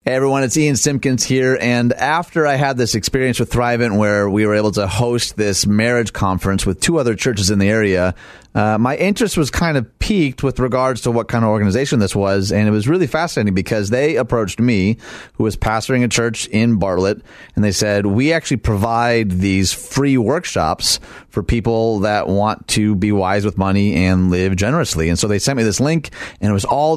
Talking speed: 210 wpm